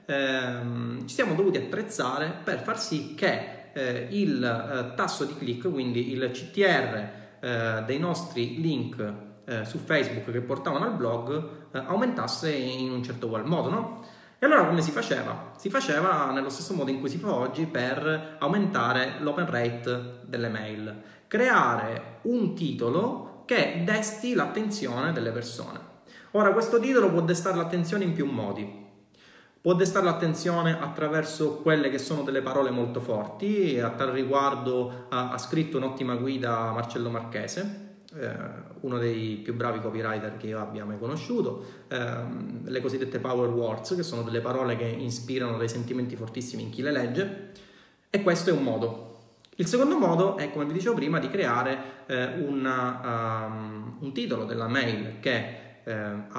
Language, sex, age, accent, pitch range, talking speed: Italian, male, 30-49, native, 120-170 Hz, 155 wpm